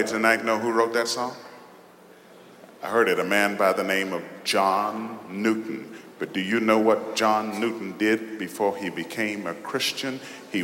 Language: English